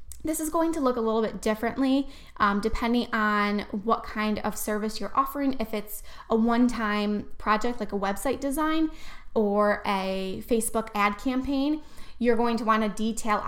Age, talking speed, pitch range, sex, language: 10-29, 170 wpm, 210-255 Hz, female, English